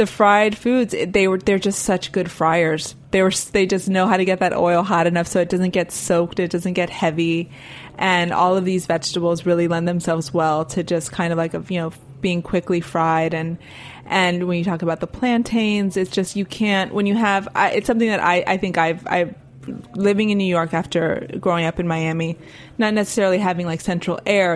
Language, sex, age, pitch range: English, female, 20-39, 165-190 Hz